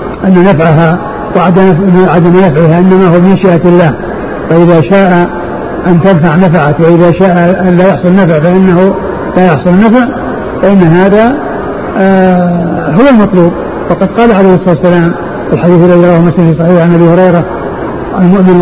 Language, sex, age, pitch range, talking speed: Arabic, male, 60-79, 175-215 Hz, 135 wpm